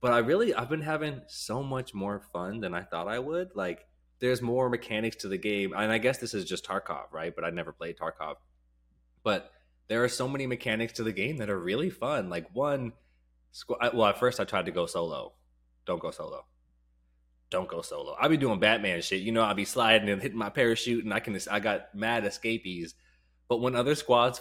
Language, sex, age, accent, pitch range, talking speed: English, male, 20-39, American, 85-125 Hz, 230 wpm